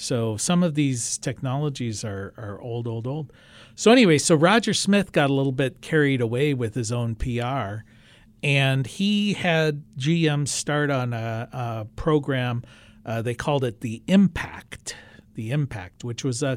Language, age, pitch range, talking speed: English, 50-69, 115-150 Hz, 165 wpm